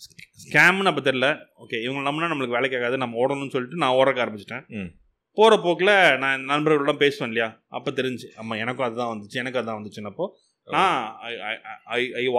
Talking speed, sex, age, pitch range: 145 wpm, male, 30-49, 110-145 Hz